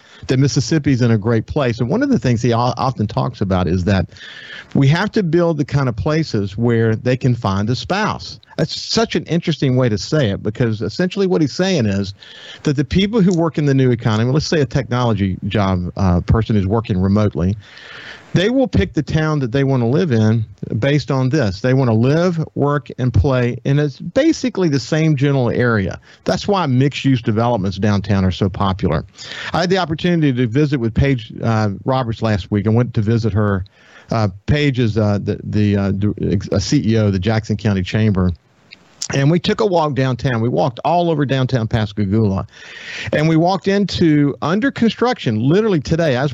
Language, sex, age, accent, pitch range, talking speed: English, male, 50-69, American, 110-150 Hz, 200 wpm